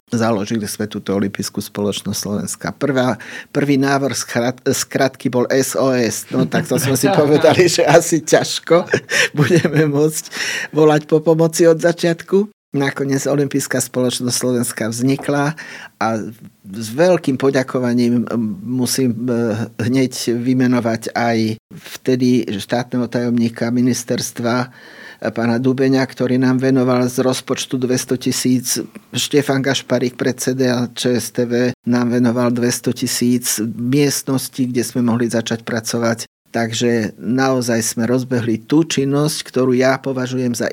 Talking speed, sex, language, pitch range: 115 wpm, male, Slovak, 115-135 Hz